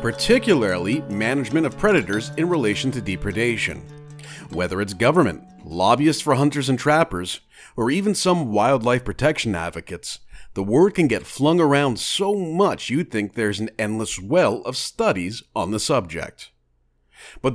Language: English